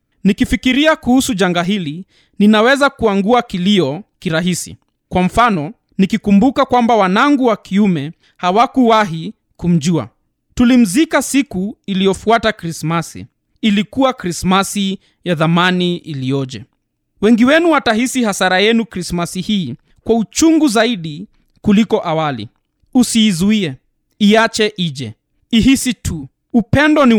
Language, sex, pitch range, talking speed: Swahili, male, 175-235 Hz, 95 wpm